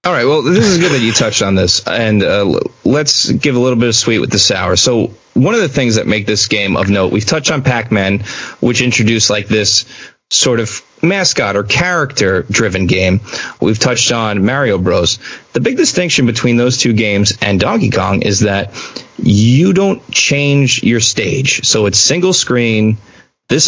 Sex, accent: male, American